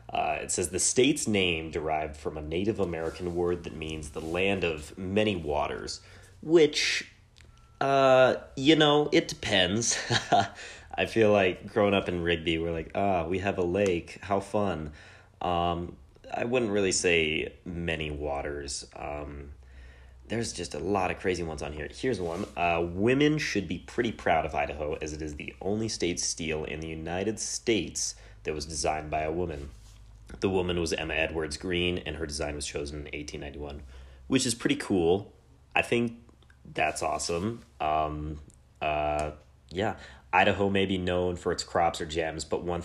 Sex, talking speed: male, 170 wpm